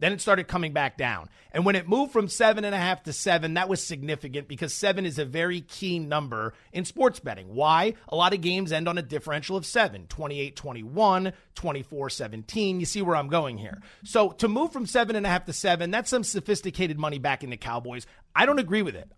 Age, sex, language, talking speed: 30-49, male, English, 230 wpm